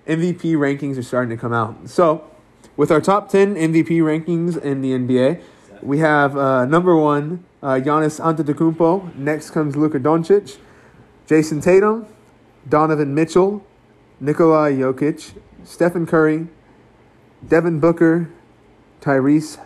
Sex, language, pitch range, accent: male, English, 135-165 Hz, American